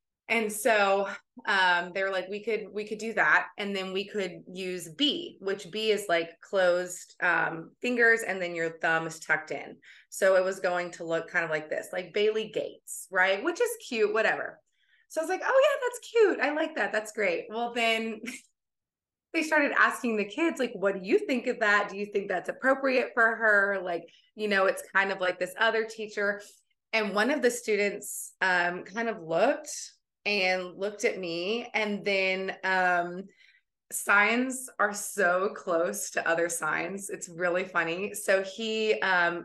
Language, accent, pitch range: English, American, 180-225 Hz